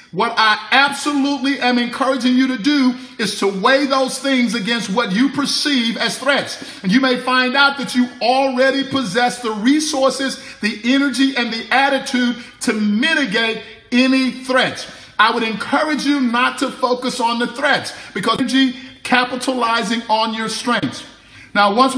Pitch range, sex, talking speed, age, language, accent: 225-265 Hz, male, 155 wpm, 50-69, English, American